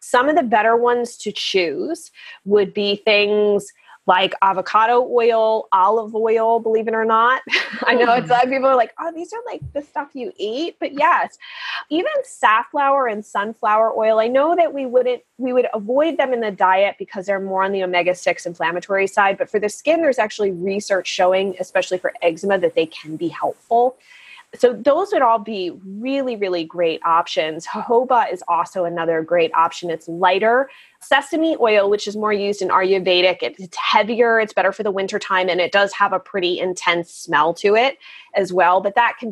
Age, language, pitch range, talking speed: 20-39, English, 190-255 Hz, 190 wpm